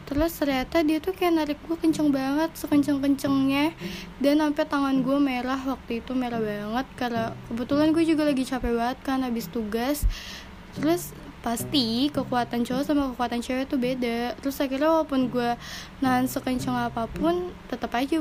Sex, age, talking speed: female, 10-29, 155 wpm